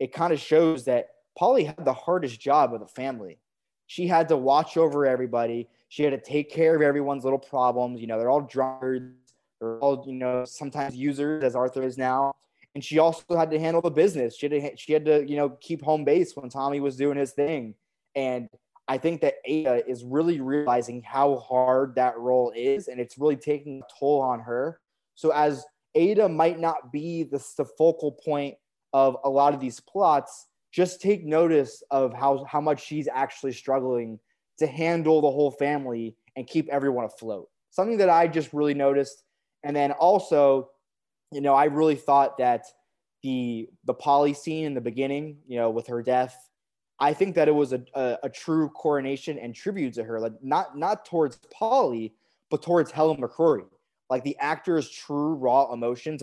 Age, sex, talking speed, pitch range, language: 20-39, male, 190 wpm, 125-155 Hz, English